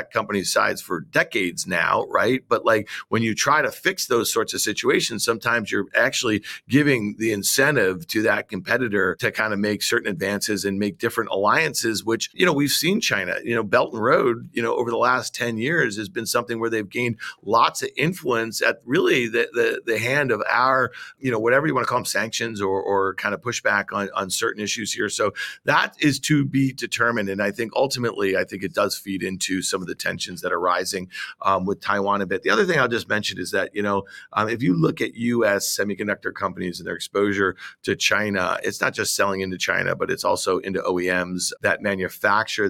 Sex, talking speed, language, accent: male, 220 wpm, English, American